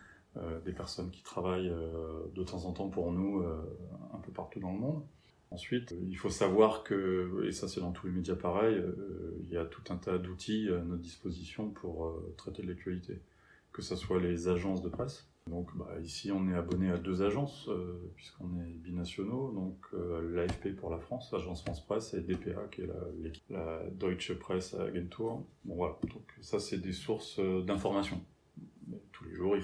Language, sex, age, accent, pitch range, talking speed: French, male, 30-49, French, 85-100 Hz, 195 wpm